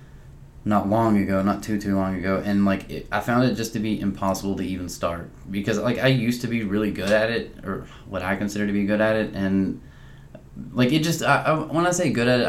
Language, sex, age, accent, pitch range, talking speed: English, male, 20-39, American, 95-115 Hz, 250 wpm